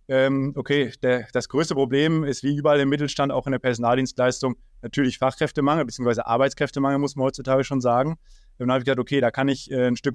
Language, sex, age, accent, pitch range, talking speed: German, male, 20-39, German, 125-150 Hz, 195 wpm